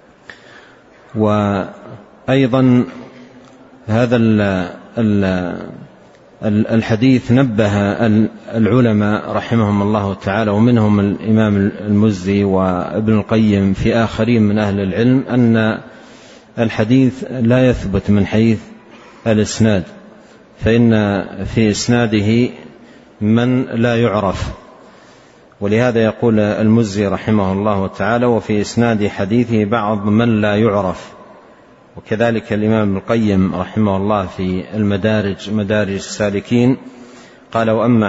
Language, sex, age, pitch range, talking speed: Arabic, male, 40-59, 105-115 Hz, 90 wpm